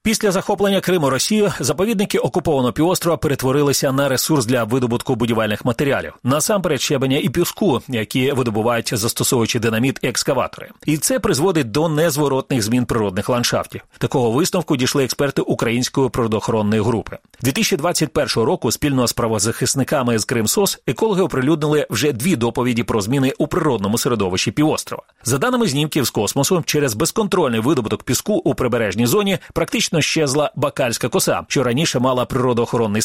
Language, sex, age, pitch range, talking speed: Russian, male, 40-59, 110-150 Hz, 145 wpm